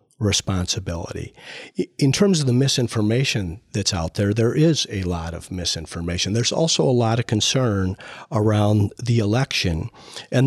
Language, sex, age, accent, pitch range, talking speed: English, male, 50-69, American, 100-120 Hz, 145 wpm